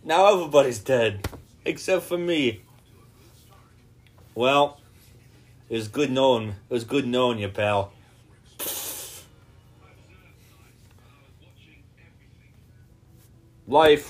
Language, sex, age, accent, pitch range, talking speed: English, male, 30-49, American, 100-120 Hz, 75 wpm